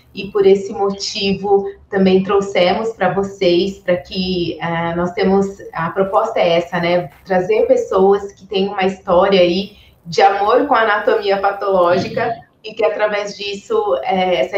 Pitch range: 190-245 Hz